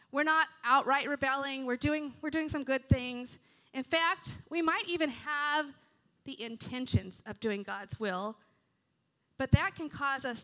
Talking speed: 160 wpm